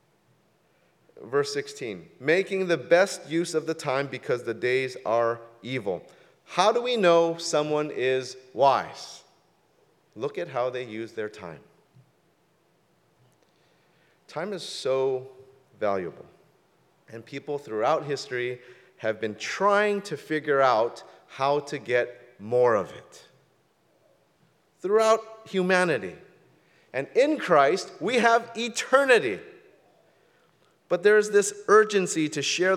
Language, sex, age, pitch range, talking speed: English, male, 30-49, 125-180 Hz, 115 wpm